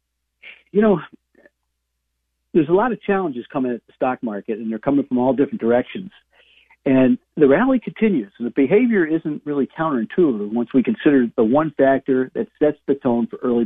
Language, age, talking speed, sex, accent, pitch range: English, 50-69, 180 wpm, male, American, 110-150 Hz